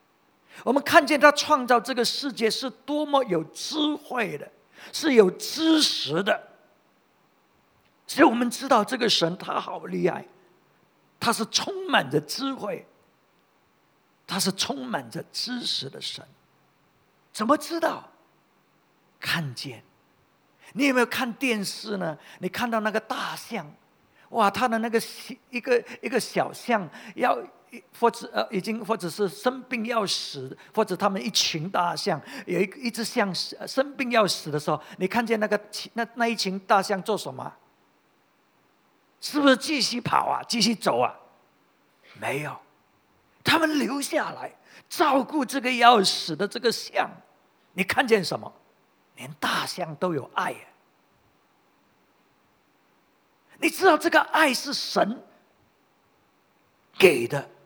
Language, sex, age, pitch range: English, male, 50-69, 200-270 Hz